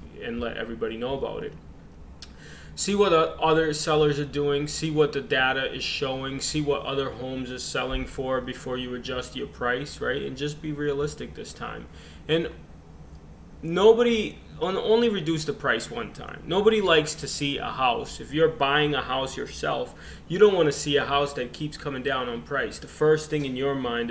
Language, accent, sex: English, American, male